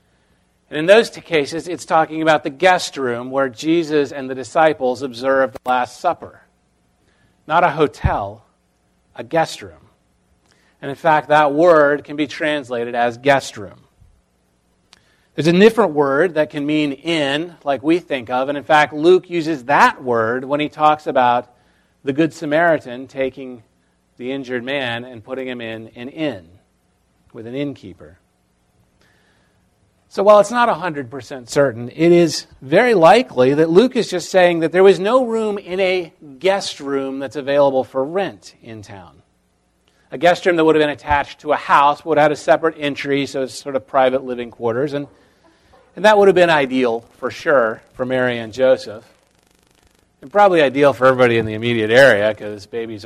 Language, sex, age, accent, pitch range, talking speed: English, male, 40-59, American, 115-155 Hz, 175 wpm